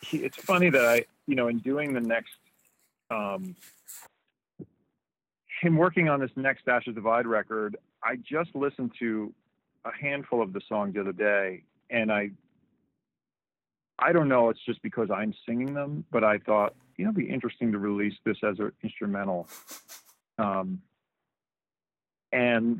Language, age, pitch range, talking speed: English, 40-59, 100-130 Hz, 155 wpm